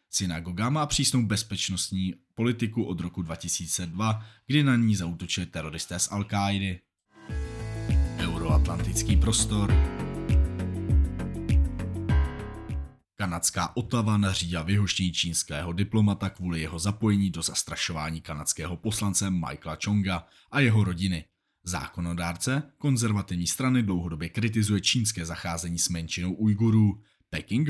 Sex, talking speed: male, 100 wpm